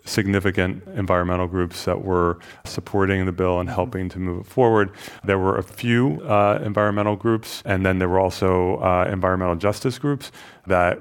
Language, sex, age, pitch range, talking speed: English, male, 30-49, 95-115 Hz, 170 wpm